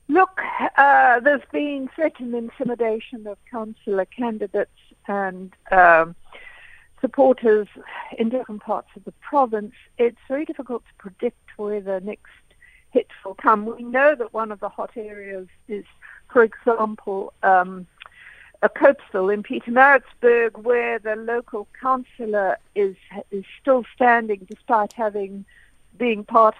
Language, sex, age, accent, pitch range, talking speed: English, female, 50-69, British, 205-260 Hz, 130 wpm